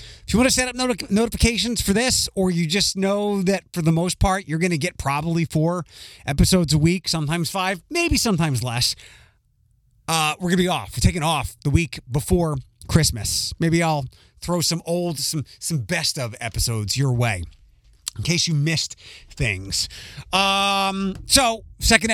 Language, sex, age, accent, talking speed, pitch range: English, male, 30-49, American, 175 wpm, 125-185 Hz